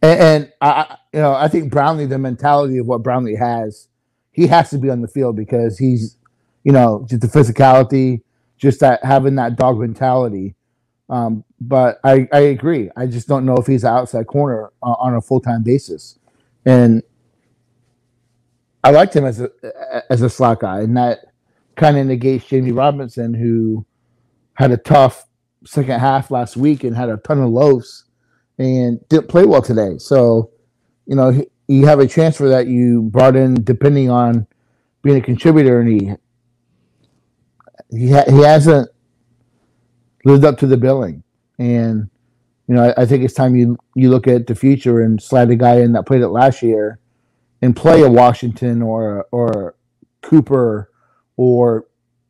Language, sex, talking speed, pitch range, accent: English, male, 165 wpm, 120-135 Hz, American